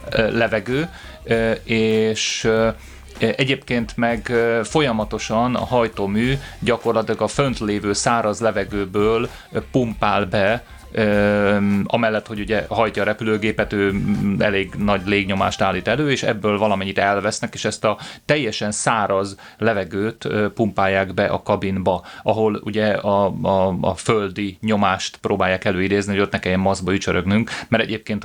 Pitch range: 100-115 Hz